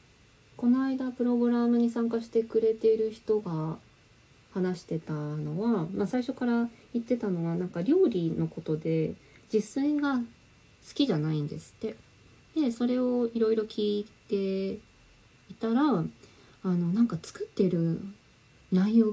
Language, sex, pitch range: Japanese, female, 155-220 Hz